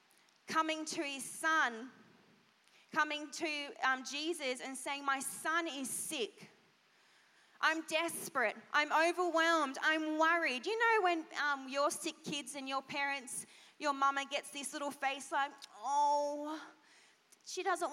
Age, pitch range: 20-39, 285-360 Hz